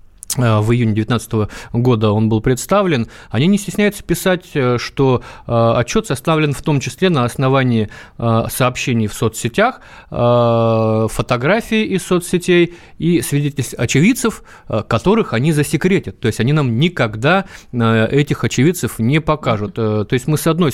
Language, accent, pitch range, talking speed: Russian, native, 110-140 Hz, 130 wpm